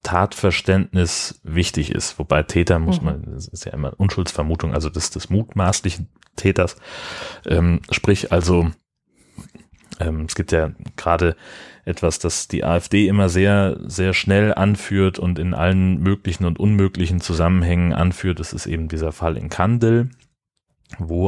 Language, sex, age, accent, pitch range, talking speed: German, male, 30-49, German, 85-95 Hz, 145 wpm